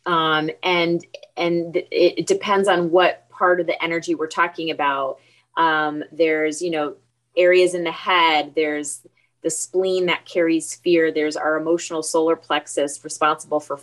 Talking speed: 150 wpm